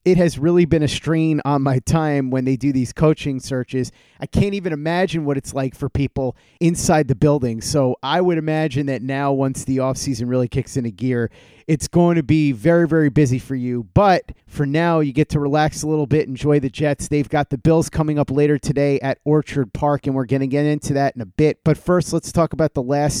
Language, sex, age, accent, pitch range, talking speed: English, male, 30-49, American, 130-155 Hz, 235 wpm